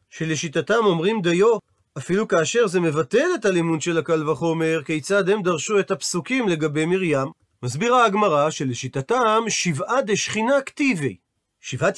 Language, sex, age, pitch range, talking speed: Hebrew, male, 40-59, 160-225 Hz, 130 wpm